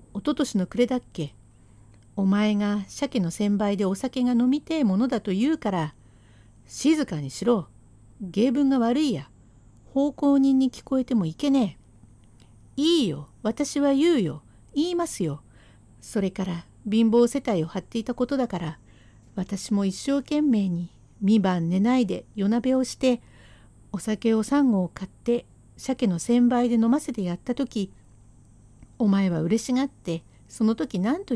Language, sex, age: Japanese, female, 50-69